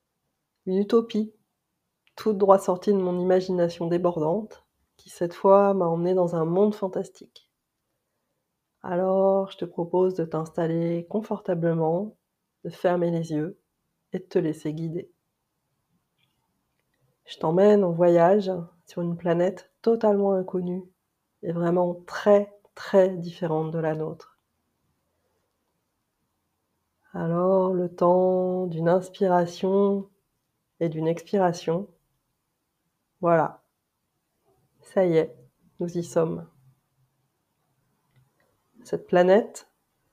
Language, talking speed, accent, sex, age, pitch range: French, 100 wpm, French, female, 30-49, 160-190 Hz